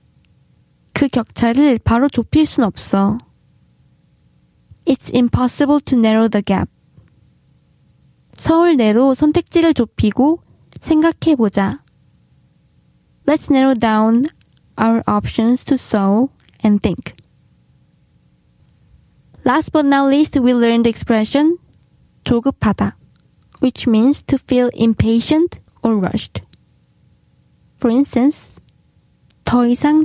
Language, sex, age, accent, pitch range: Korean, female, 20-39, native, 225-285 Hz